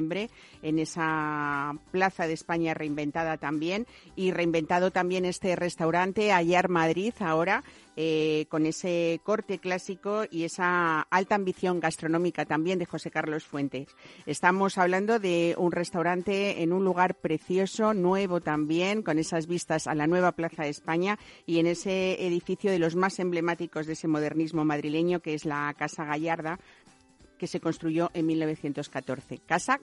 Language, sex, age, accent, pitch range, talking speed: Spanish, female, 50-69, Spanish, 160-185 Hz, 145 wpm